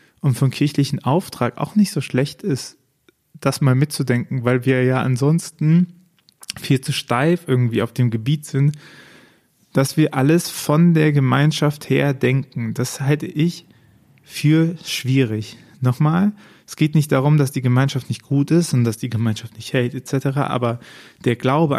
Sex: male